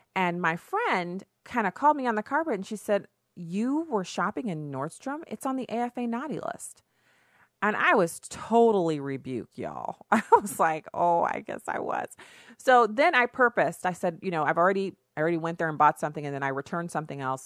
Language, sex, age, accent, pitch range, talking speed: English, female, 30-49, American, 155-200 Hz, 210 wpm